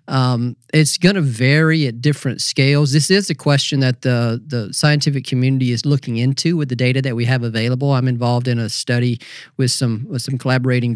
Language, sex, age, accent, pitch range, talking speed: English, male, 40-59, American, 120-145 Hz, 205 wpm